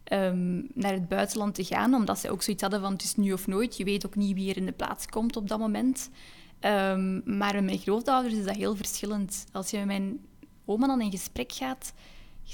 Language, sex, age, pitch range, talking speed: Dutch, female, 10-29, 195-230 Hz, 235 wpm